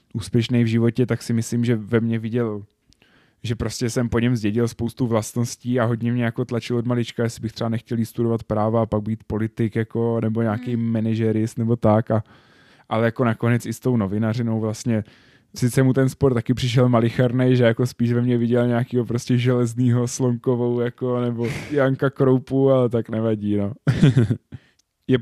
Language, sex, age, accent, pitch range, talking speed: Czech, male, 20-39, native, 115-130 Hz, 180 wpm